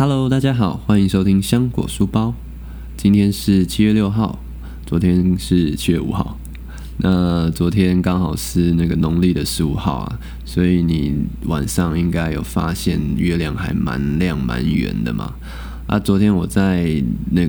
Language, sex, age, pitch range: Chinese, male, 20-39, 75-95 Hz